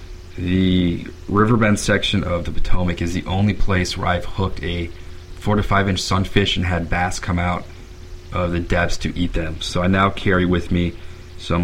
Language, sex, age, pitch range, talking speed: English, male, 30-49, 90-95 Hz, 190 wpm